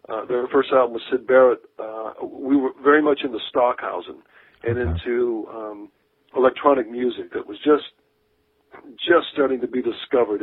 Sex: male